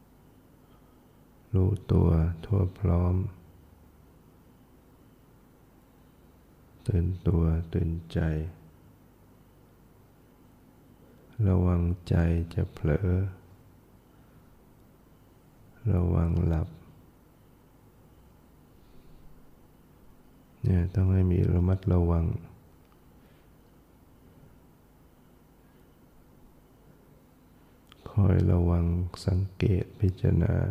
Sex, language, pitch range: male, English, 85-100 Hz